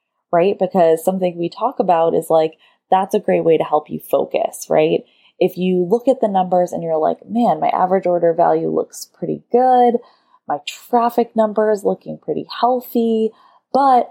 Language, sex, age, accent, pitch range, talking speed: English, female, 10-29, American, 170-240 Hz, 180 wpm